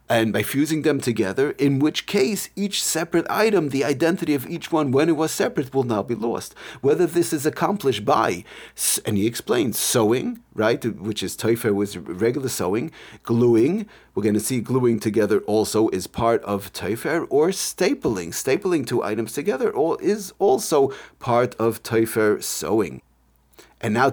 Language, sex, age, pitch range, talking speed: English, male, 40-59, 110-145 Hz, 165 wpm